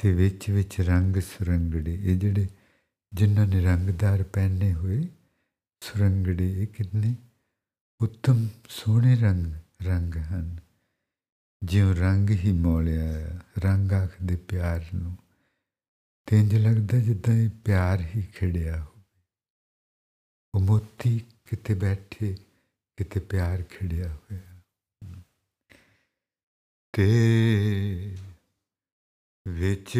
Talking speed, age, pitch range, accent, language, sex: 60 wpm, 60-79, 95-115 Hz, Indian, English, male